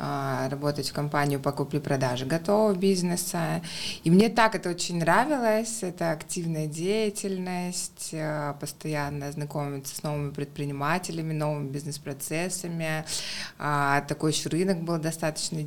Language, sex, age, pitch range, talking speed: Russian, female, 20-39, 145-170 Hz, 105 wpm